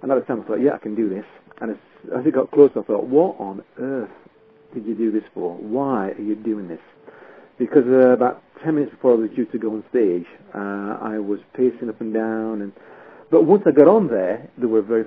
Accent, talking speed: British, 245 wpm